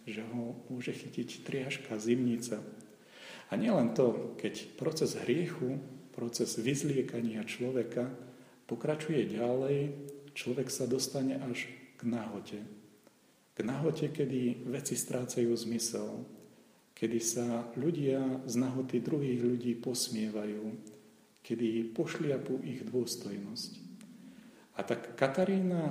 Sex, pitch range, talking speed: male, 115-145 Hz, 100 wpm